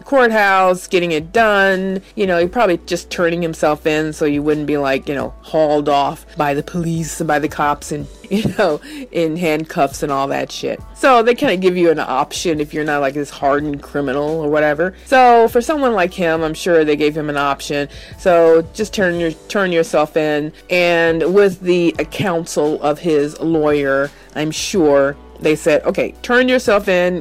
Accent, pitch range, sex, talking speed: American, 155-210 Hz, female, 190 wpm